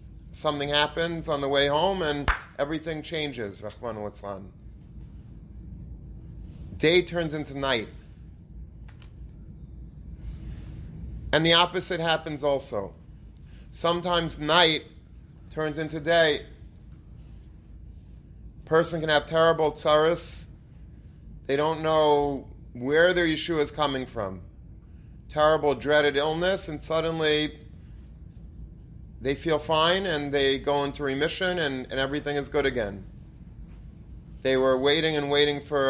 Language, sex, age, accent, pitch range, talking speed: English, male, 30-49, American, 130-165 Hz, 105 wpm